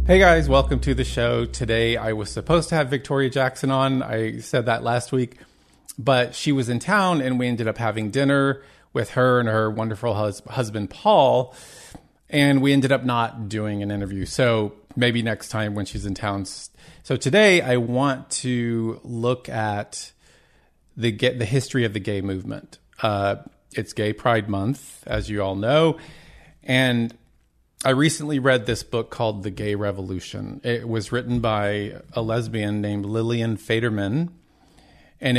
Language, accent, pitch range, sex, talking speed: English, American, 105-130 Hz, male, 165 wpm